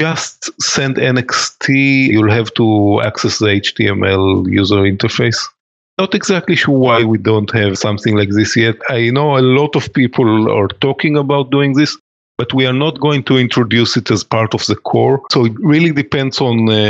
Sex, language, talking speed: male, English, 185 wpm